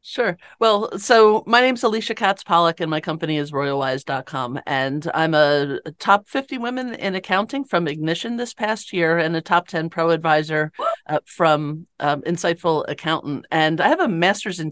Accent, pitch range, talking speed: American, 145-170 Hz, 180 wpm